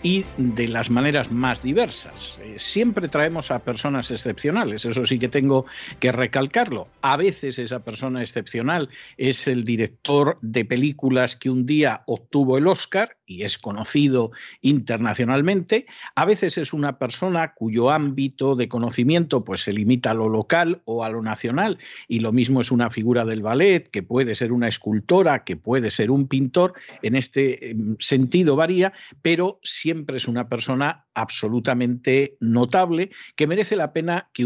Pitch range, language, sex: 120-150 Hz, Spanish, male